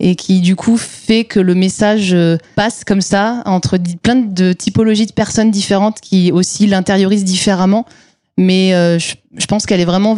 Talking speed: 185 wpm